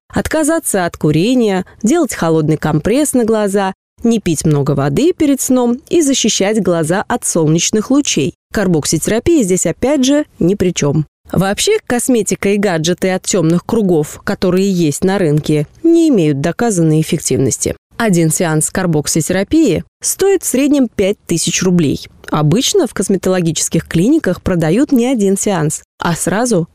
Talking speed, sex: 135 wpm, female